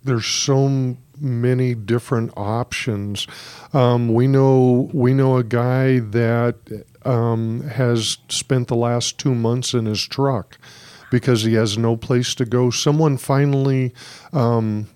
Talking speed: 130 wpm